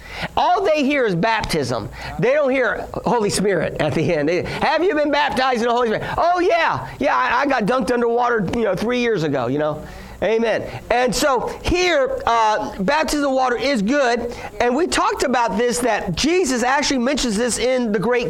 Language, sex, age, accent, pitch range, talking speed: English, male, 40-59, American, 210-260 Hz, 195 wpm